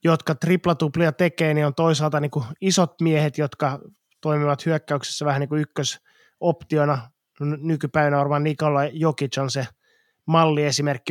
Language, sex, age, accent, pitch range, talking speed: Finnish, male, 20-39, native, 140-160 Hz, 135 wpm